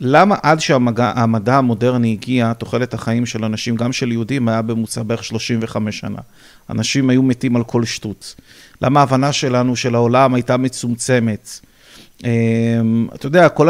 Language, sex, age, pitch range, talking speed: Hebrew, male, 30-49, 120-180 Hz, 145 wpm